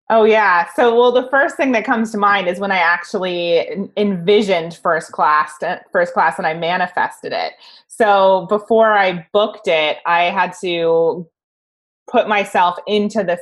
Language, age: English, 20-39